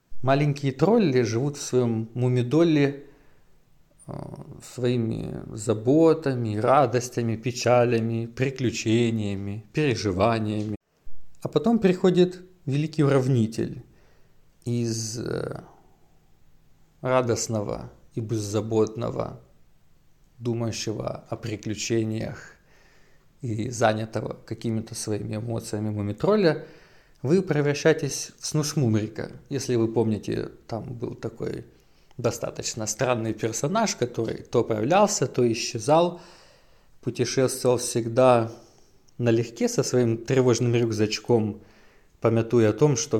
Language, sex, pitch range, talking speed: English, male, 110-135 Hz, 85 wpm